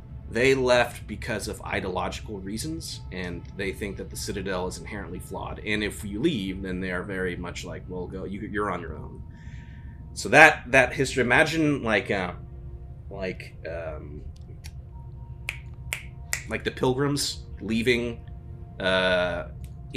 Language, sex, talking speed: English, male, 135 wpm